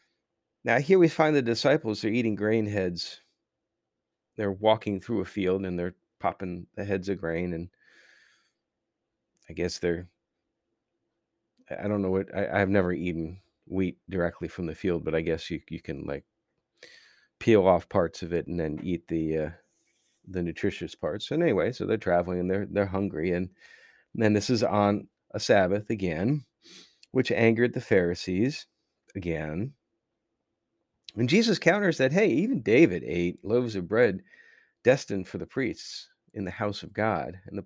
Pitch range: 90-110 Hz